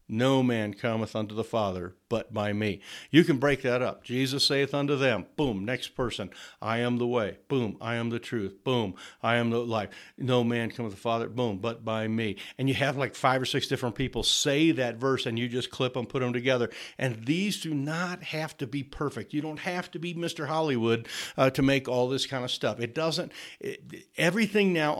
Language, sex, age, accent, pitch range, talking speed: English, male, 60-79, American, 120-155 Hz, 220 wpm